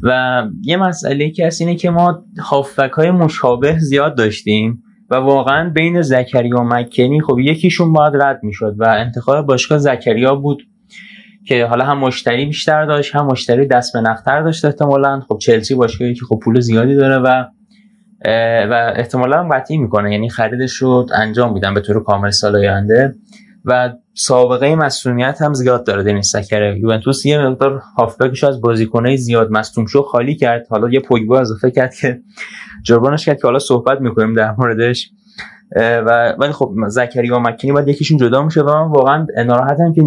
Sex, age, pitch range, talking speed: male, 20-39, 115-145 Hz, 160 wpm